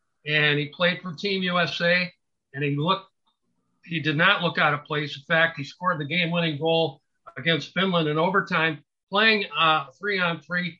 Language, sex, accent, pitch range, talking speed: English, male, American, 150-185 Hz, 160 wpm